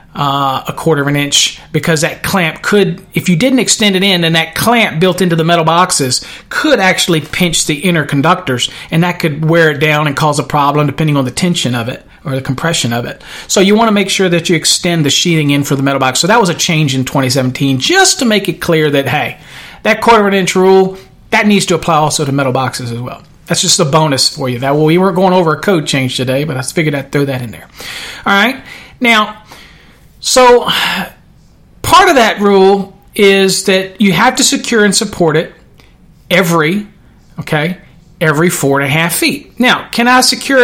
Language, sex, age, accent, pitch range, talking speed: English, male, 40-59, American, 150-205 Hz, 220 wpm